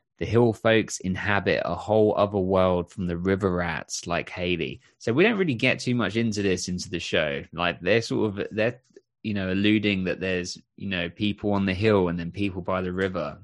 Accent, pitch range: British, 90-110 Hz